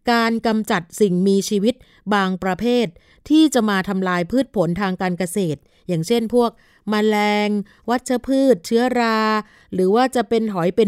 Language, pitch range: Thai, 190-235 Hz